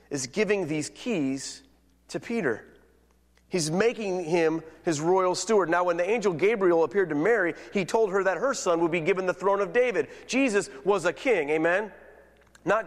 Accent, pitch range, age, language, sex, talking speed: American, 155-245 Hz, 30-49, English, male, 180 wpm